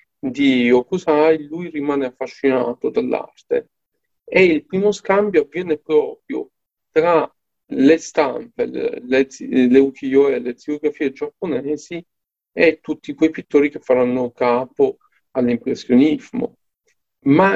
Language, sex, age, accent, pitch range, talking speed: Italian, male, 40-59, native, 135-230 Hz, 110 wpm